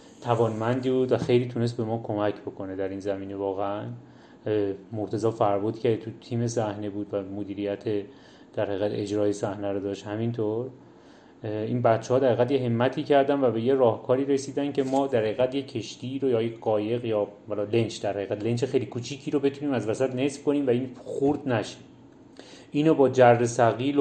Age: 30-49